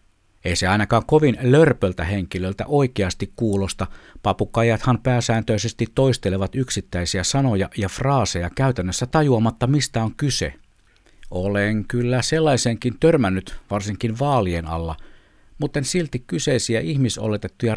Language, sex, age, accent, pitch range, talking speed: Finnish, male, 60-79, native, 95-130 Hz, 110 wpm